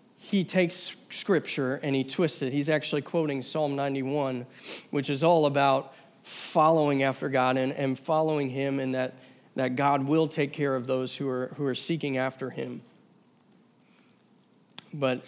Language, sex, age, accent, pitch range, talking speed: English, male, 40-59, American, 135-180 Hz, 155 wpm